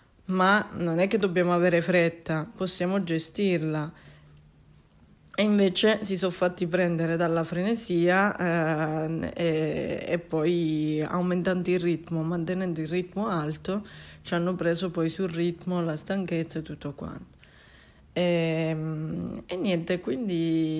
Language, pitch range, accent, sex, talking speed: Italian, 160-185 Hz, native, female, 125 wpm